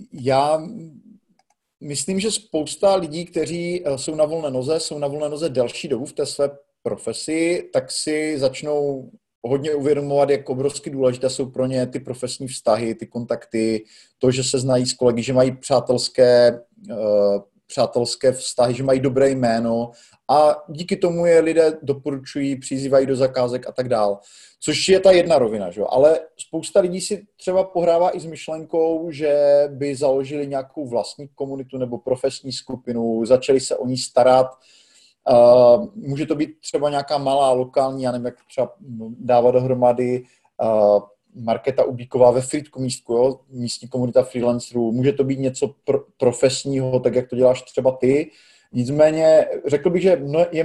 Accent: native